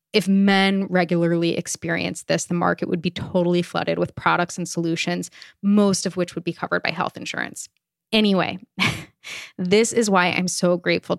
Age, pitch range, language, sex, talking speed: 20-39, 175-195 Hz, English, female, 165 wpm